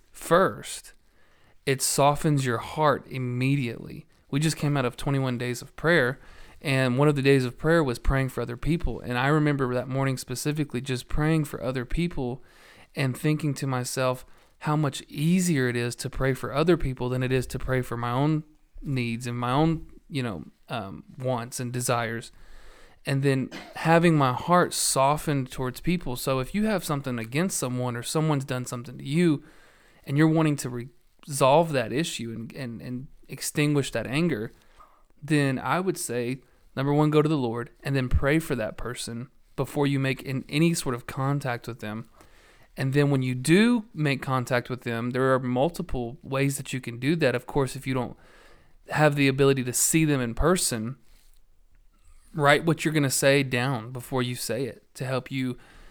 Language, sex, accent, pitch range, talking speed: English, male, American, 125-150 Hz, 190 wpm